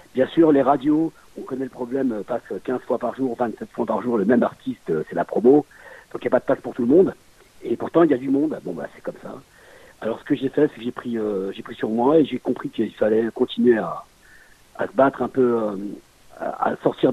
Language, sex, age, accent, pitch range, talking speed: French, male, 50-69, French, 115-145 Hz, 265 wpm